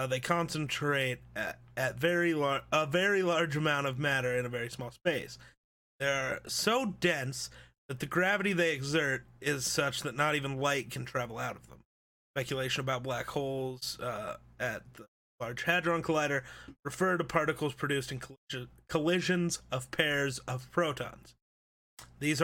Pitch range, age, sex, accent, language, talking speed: 130-165 Hz, 30-49, male, American, English, 160 wpm